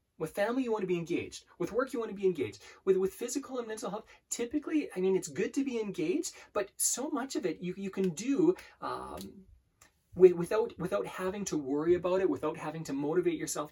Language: English